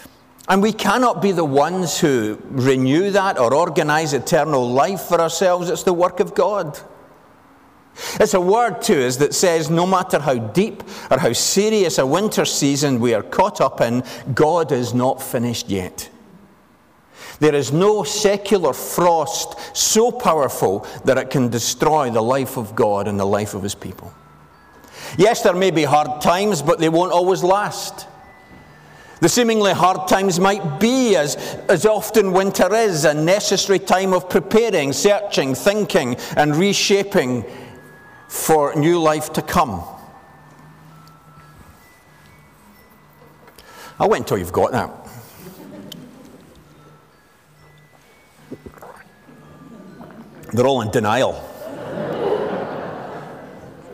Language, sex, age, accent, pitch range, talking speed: English, male, 50-69, British, 145-200 Hz, 125 wpm